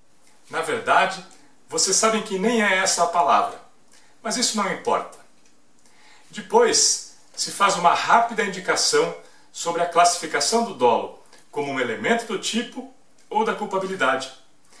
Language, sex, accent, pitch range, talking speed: Portuguese, male, Brazilian, 170-230 Hz, 135 wpm